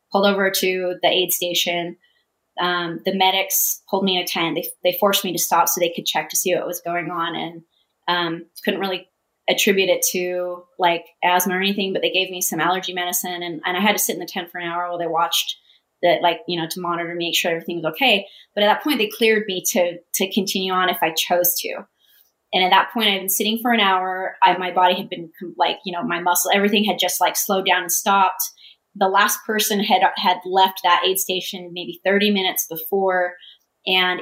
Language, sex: English, female